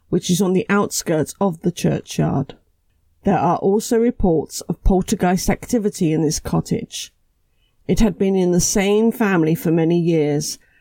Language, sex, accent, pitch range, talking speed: English, female, British, 160-195 Hz, 155 wpm